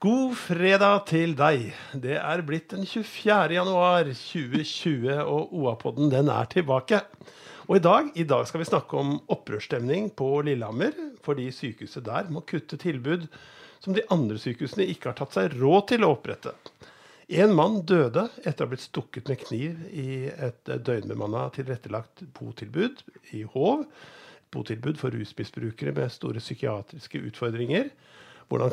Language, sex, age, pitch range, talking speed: English, male, 50-69, 125-170 Hz, 155 wpm